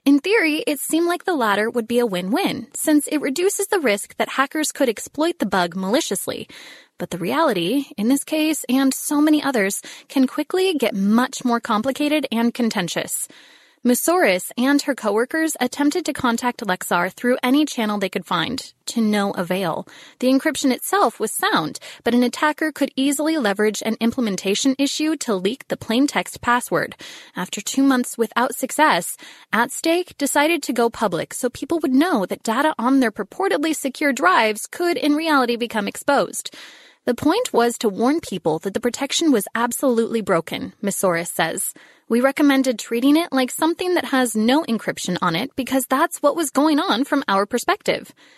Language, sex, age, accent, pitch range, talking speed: English, female, 20-39, American, 215-295 Hz, 170 wpm